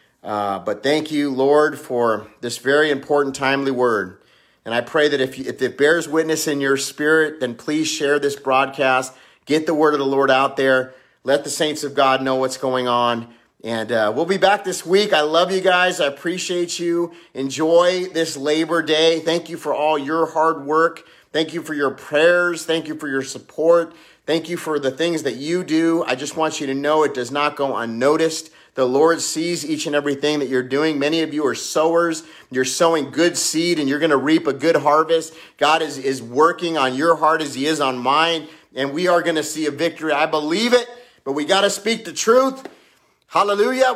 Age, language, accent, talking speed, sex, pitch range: 30-49, English, American, 210 wpm, male, 135-165 Hz